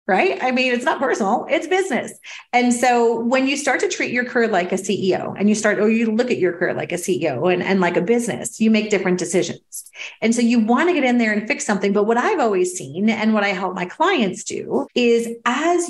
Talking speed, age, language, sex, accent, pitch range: 250 wpm, 30-49, English, female, American, 185-235 Hz